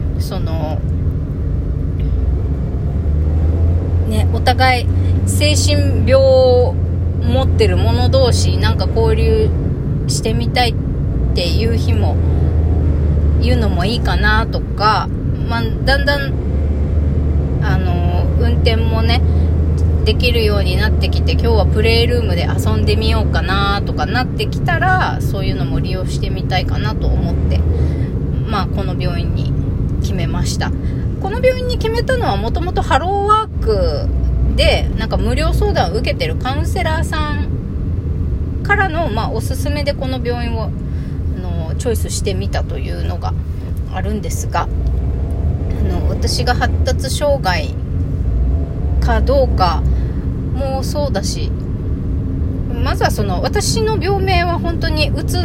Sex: female